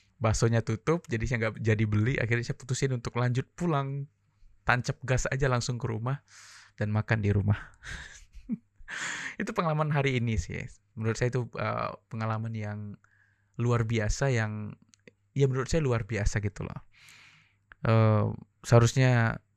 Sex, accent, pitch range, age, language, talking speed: male, native, 105-125 Hz, 20-39, Indonesian, 145 wpm